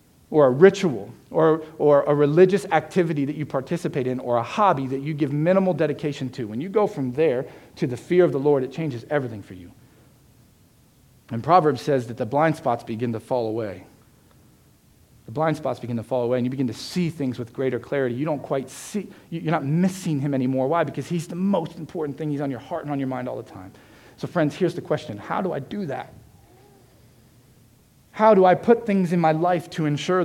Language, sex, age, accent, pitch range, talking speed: English, male, 40-59, American, 120-155 Hz, 220 wpm